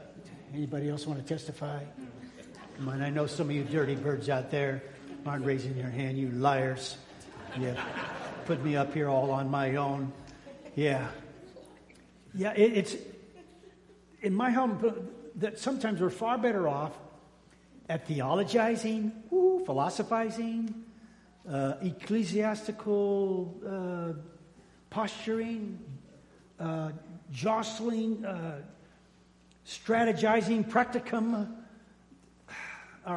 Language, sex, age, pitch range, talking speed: English, male, 60-79, 145-210 Hz, 100 wpm